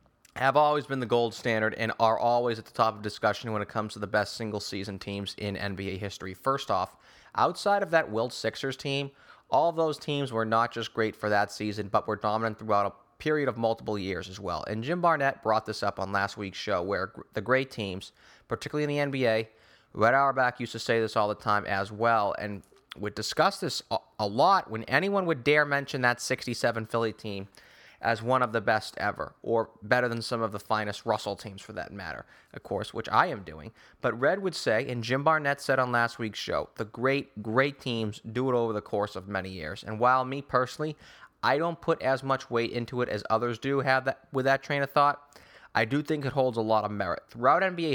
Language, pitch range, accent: English, 105-135 Hz, American